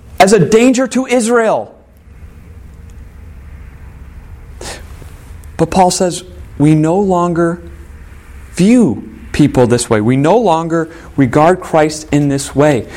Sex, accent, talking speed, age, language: male, American, 105 wpm, 40-59, English